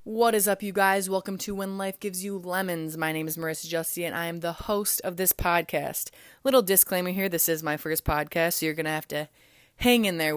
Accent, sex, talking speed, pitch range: American, female, 245 wpm, 155-205 Hz